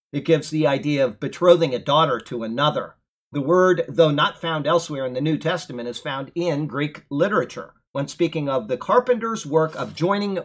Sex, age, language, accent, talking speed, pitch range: male, 50-69, English, American, 190 wpm, 140-175 Hz